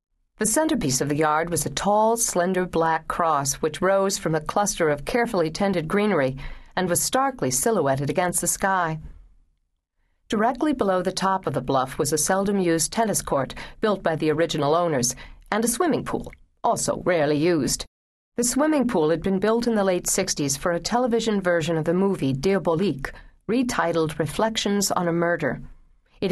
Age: 50-69